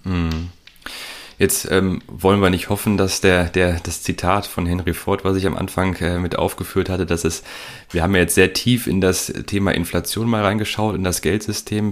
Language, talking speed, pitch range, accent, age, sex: German, 195 wpm, 85-105 Hz, German, 30-49, male